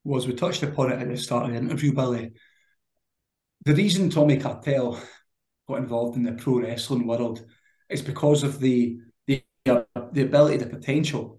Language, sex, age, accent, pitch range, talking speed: English, male, 20-39, British, 120-145 Hz, 175 wpm